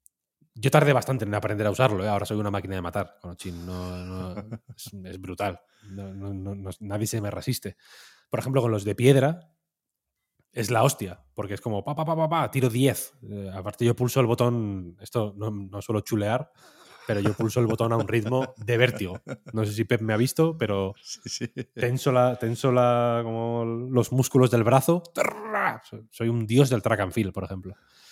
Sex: male